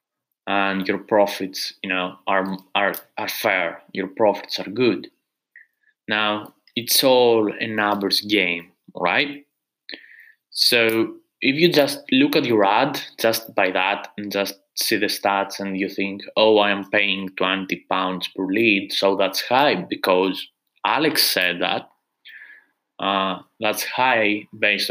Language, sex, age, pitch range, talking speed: English, male, 20-39, 100-125 Hz, 140 wpm